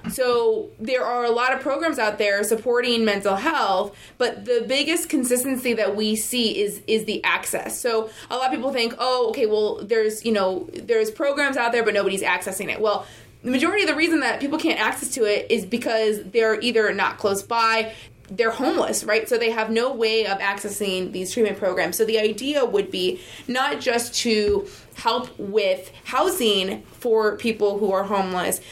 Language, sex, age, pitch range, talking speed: English, female, 20-39, 205-245 Hz, 190 wpm